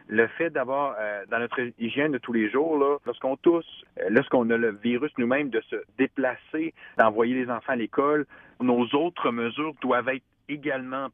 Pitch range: 115-145 Hz